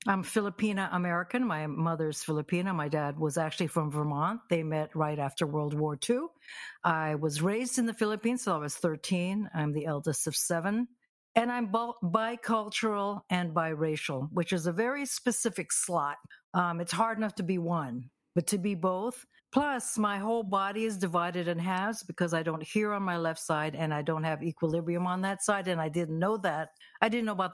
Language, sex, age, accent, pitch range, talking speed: English, female, 60-79, American, 160-205 Hz, 190 wpm